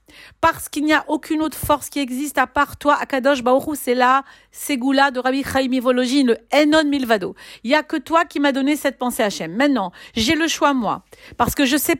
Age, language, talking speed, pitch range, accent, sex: 40-59, French, 220 wpm, 240-305 Hz, French, female